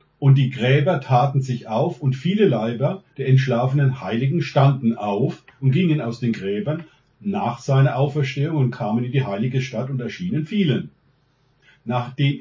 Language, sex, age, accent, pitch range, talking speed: German, male, 50-69, German, 120-150 Hz, 155 wpm